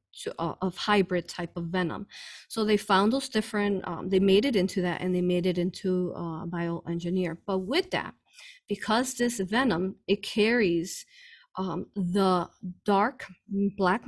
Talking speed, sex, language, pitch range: 155 wpm, female, English, 180-215 Hz